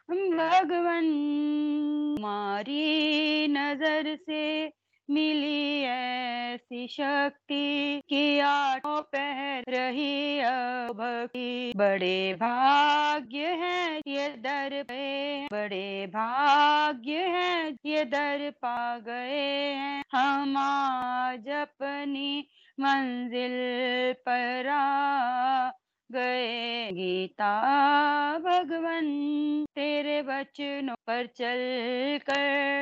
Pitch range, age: 270-310 Hz, 30-49